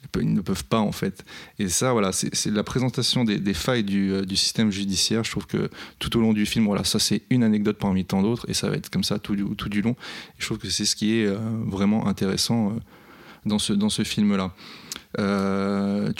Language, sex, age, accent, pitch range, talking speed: French, male, 20-39, French, 100-115 Hz, 245 wpm